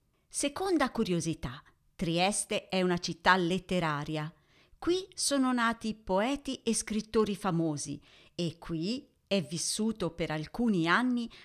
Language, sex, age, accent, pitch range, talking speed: Italian, female, 50-69, native, 165-225 Hz, 110 wpm